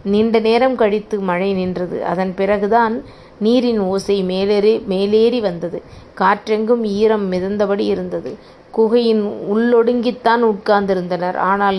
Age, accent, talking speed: 30-49, native, 100 wpm